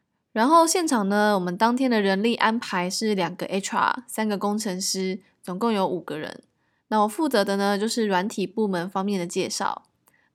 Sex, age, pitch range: female, 10-29, 195-245 Hz